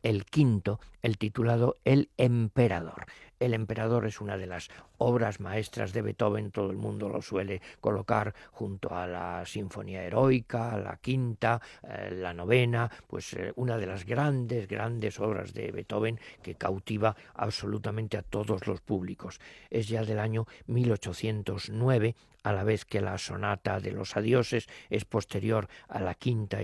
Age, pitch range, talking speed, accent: 50-69, 100-120 Hz, 155 wpm, Spanish